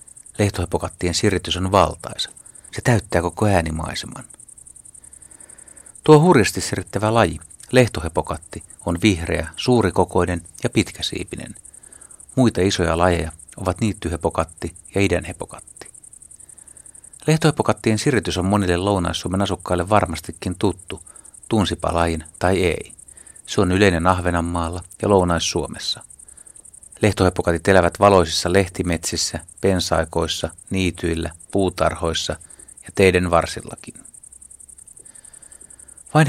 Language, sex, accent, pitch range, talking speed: Finnish, male, native, 85-100 Hz, 90 wpm